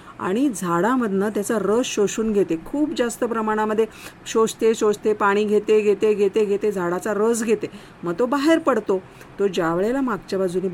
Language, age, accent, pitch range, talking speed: Marathi, 50-69, native, 185-235 Hz, 150 wpm